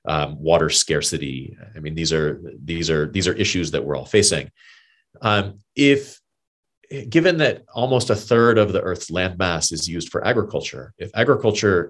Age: 30-49